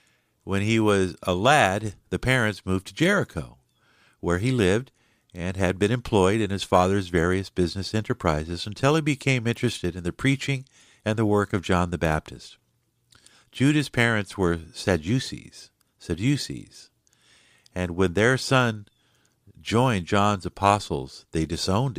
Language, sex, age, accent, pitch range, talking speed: English, male, 50-69, American, 90-120 Hz, 140 wpm